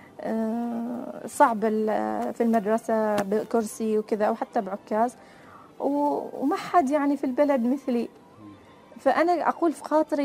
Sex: female